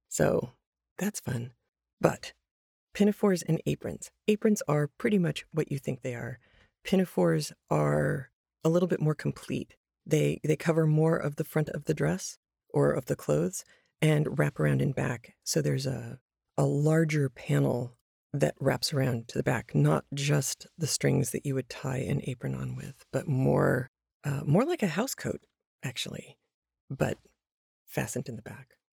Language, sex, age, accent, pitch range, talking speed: English, female, 40-59, American, 130-170 Hz, 165 wpm